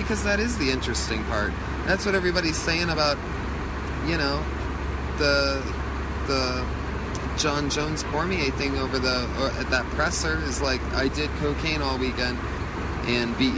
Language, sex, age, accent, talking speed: English, male, 30-49, American, 145 wpm